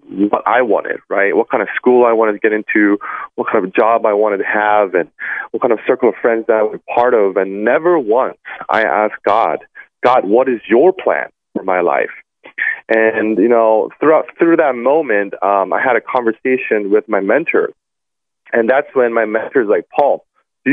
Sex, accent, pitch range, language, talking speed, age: male, American, 110-175 Hz, English, 205 wpm, 30-49